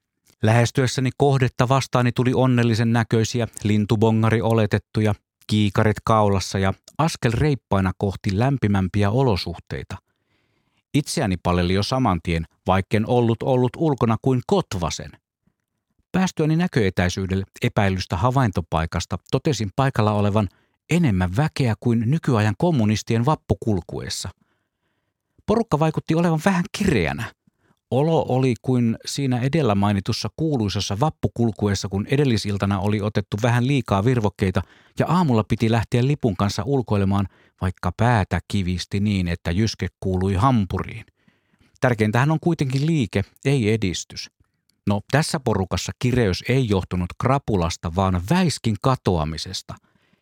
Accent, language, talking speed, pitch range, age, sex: native, Finnish, 110 wpm, 100-130 Hz, 50-69, male